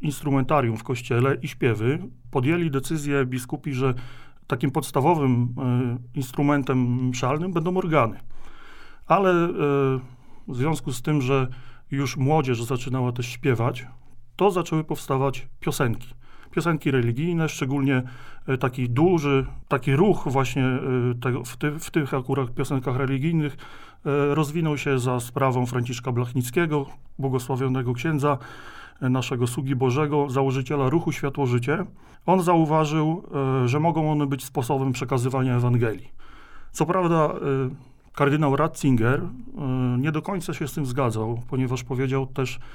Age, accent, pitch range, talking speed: 40-59, native, 130-155 Hz, 115 wpm